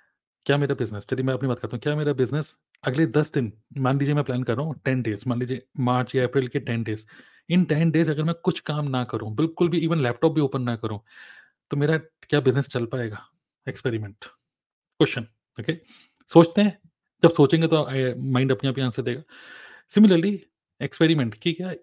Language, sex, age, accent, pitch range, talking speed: Hindi, male, 30-49, native, 130-165 Hz, 200 wpm